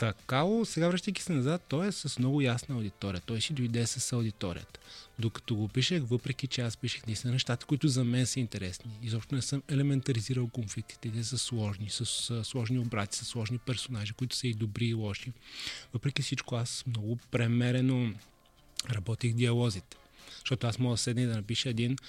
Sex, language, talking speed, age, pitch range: male, Bulgarian, 175 wpm, 20-39, 110-130 Hz